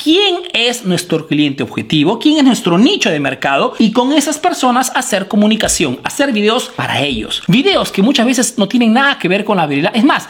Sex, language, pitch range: male, Spanish, 170-275 Hz